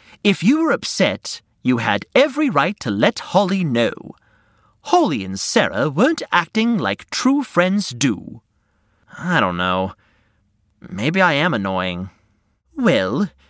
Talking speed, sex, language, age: 130 wpm, male, English, 30-49